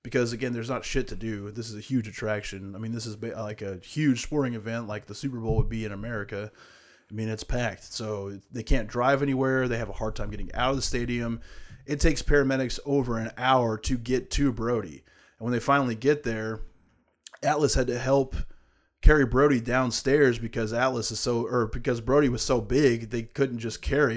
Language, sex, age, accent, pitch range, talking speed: English, male, 20-39, American, 110-135 Hz, 210 wpm